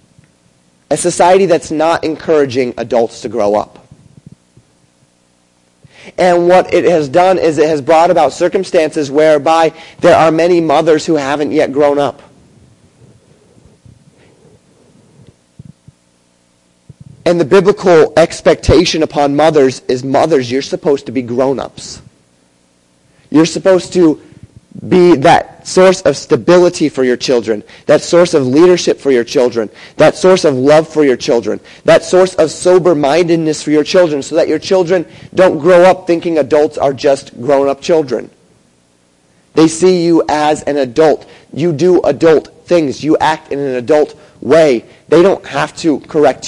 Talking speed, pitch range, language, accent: 140 wpm, 130-170 Hz, English, American